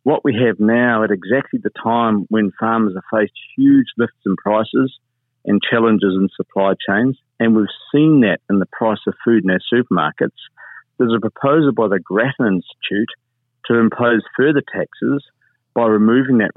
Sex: male